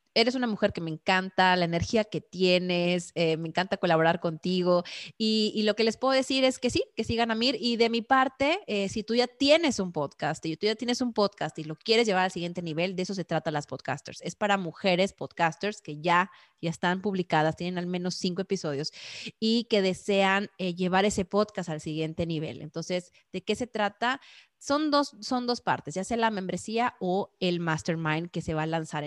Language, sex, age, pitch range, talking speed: Spanish, female, 20-39, 165-215 Hz, 215 wpm